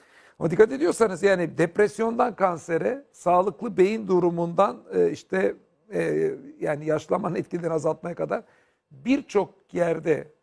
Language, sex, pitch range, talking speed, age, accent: Turkish, male, 155-210 Hz, 100 wpm, 60-79, native